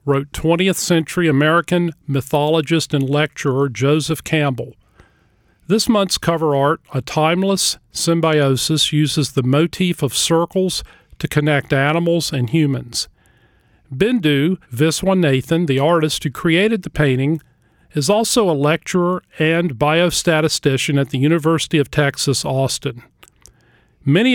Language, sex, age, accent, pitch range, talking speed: English, male, 40-59, American, 140-170 Hz, 115 wpm